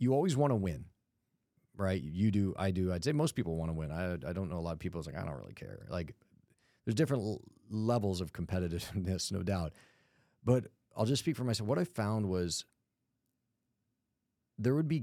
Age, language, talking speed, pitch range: 30-49, English, 210 wpm, 95-125 Hz